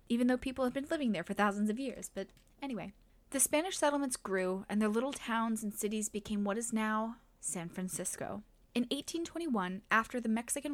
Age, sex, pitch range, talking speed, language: 10-29, female, 200-255 Hz, 190 wpm, English